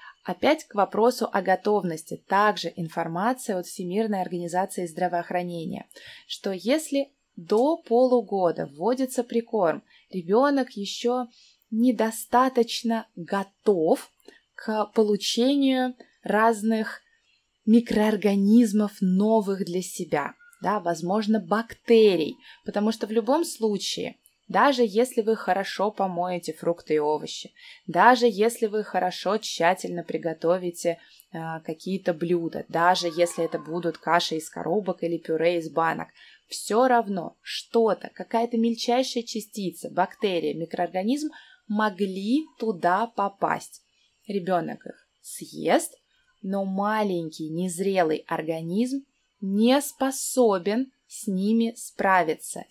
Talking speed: 100 wpm